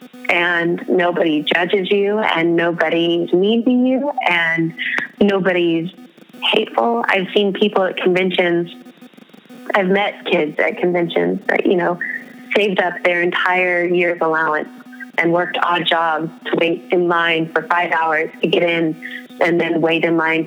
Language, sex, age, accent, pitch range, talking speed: English, female, 20-39, American, 165-200 Hz, 145 wpm